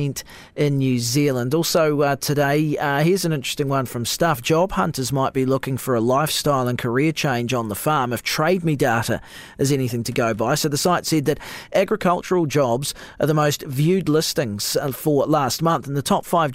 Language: English